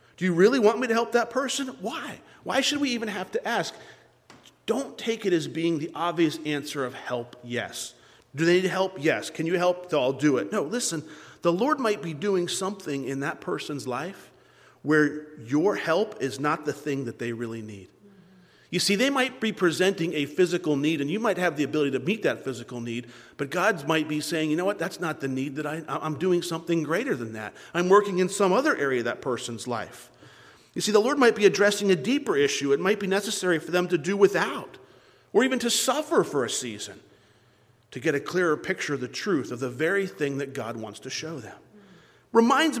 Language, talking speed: English, 220 wpm